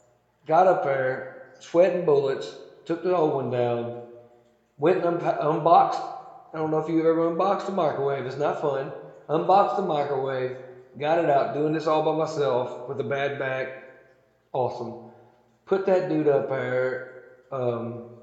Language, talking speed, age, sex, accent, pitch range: English, 160 wpm, 40-59, male, American, 125-160 Hz